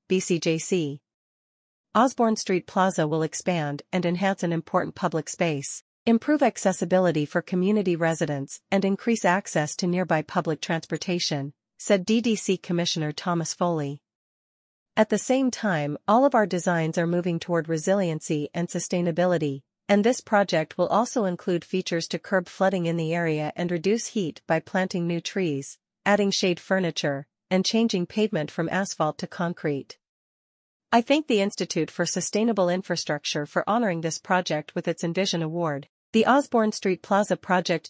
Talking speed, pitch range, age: 145 wpm, 160-195 Hz, 40-59